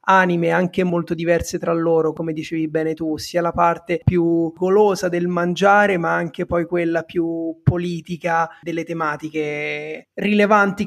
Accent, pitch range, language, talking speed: native, 165-190 Hz, Italian, 145 wpm